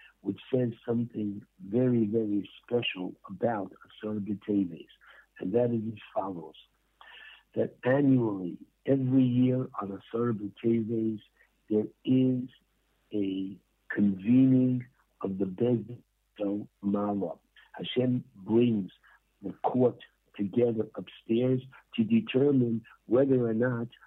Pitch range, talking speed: 105-125 Hz, 100 wpm